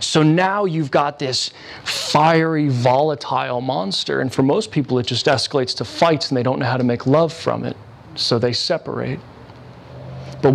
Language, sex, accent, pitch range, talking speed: English, male, American, 120-155 Hz, 175 wpm